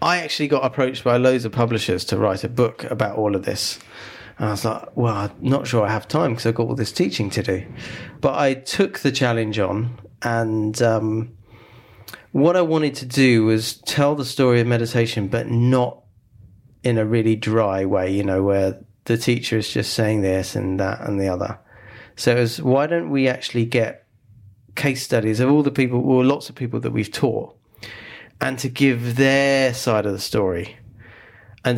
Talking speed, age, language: 200 wpm, 30-49, English